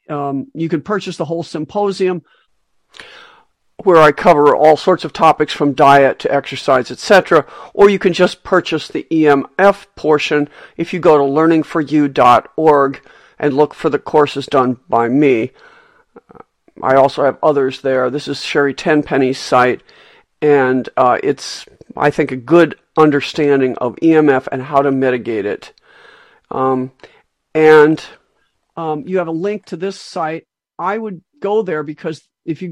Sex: male